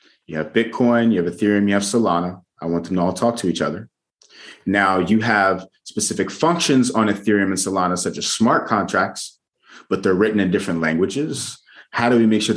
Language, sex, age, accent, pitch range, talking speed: English, male, 30-49, American, 90-115 Hz, 200 wpm